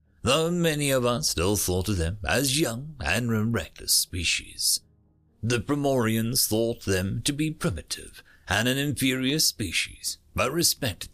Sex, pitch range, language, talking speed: male, 90-140 Hz, English, 140 wpm